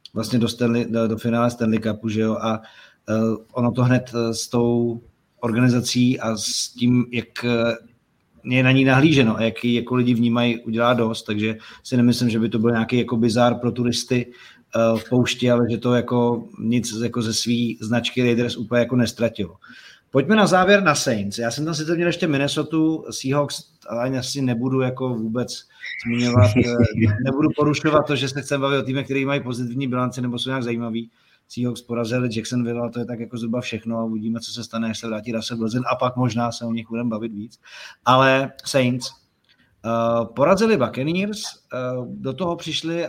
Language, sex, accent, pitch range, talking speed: Czech, male, native, 115-135 Hz, 185 wpm